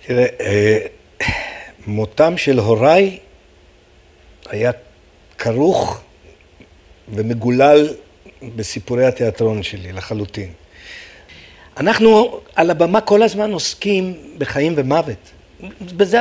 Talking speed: 75 wpm